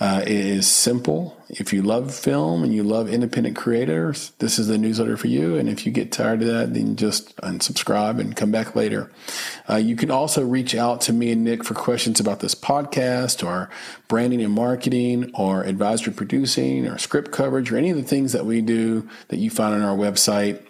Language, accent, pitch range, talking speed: English, American, 100-125 Hz, 210 wpm